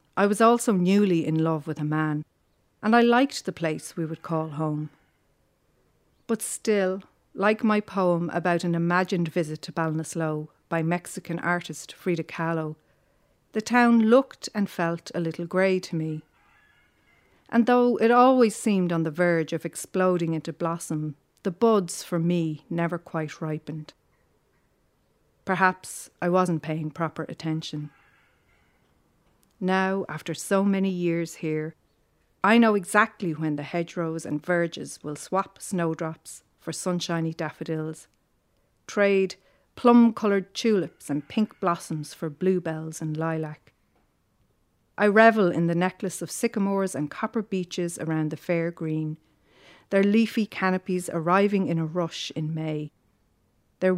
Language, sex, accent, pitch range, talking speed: English, female, Irish, 155-190 Hz, 135 wpm